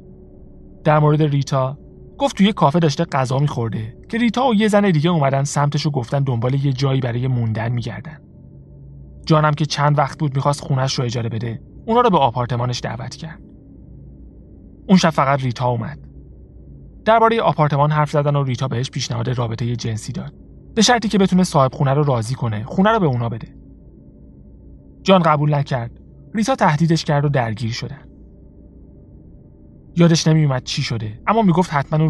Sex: male